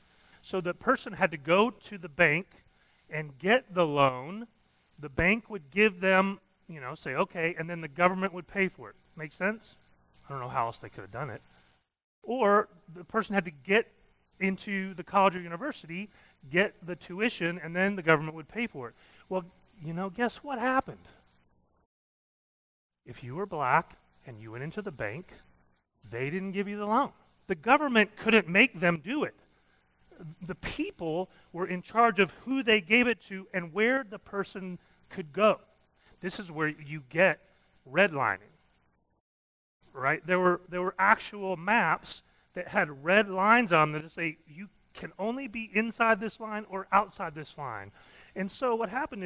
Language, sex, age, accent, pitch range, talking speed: English, male, 30-49, American, 150-210 Hz, 180 wpm